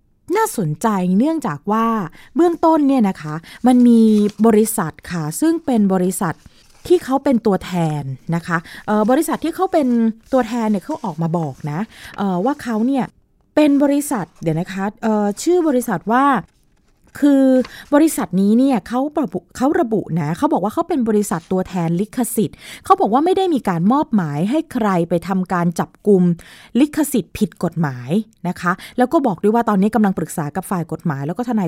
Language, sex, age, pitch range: Thai, female, 20-39, 175-255 Hz